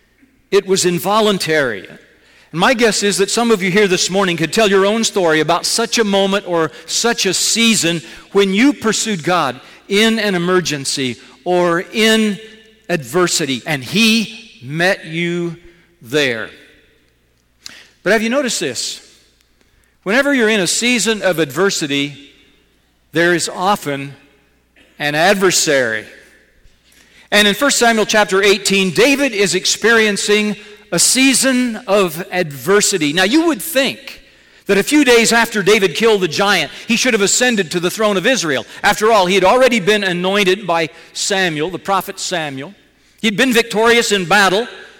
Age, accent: 50-69, American